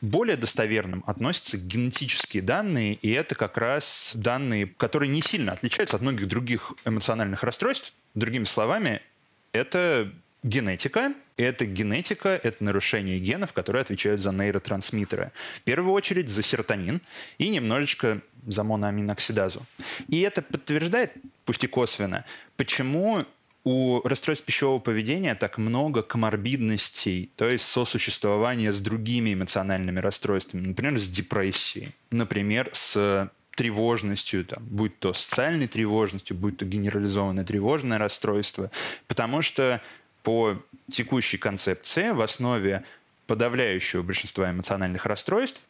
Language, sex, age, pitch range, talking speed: Russian, male, 20-39, 100-125 Hz, 115 wpm